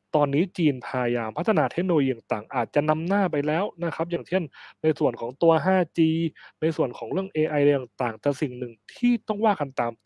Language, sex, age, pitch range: Thai, male, 20-39, 125-170 Hz